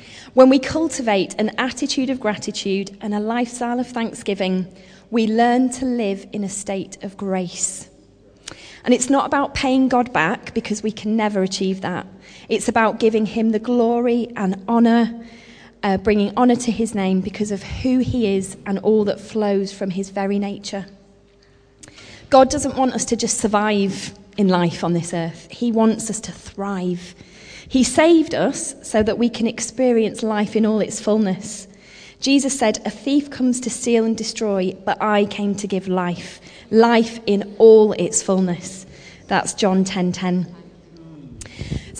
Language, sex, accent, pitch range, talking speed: English, female, British, 195-240 Hz, 165 wpm